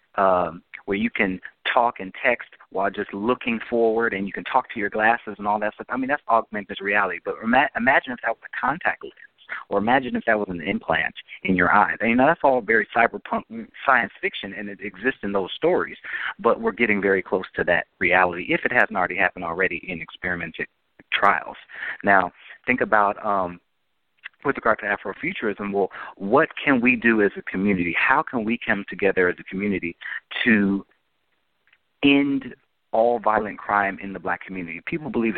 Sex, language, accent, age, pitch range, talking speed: male, English, American, 40-59, 100-115 Hz, 185 wpm